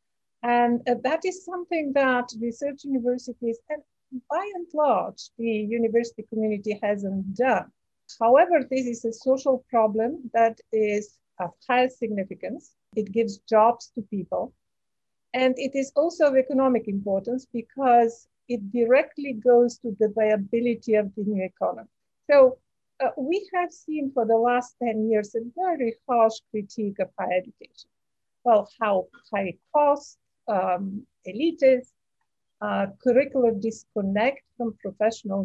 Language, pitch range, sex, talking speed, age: English, 220-270 Hz, female, 135 wpm, 50-69